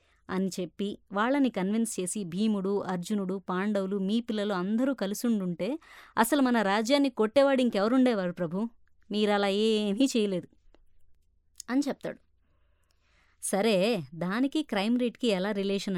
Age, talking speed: 20-39, 115 wpm